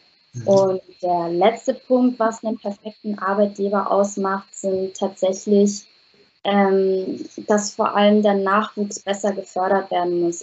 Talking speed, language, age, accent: 120 wpm, German, 20-39, German